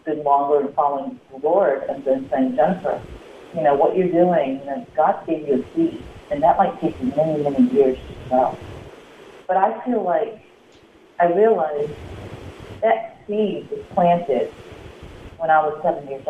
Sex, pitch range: female, 140-170 Hz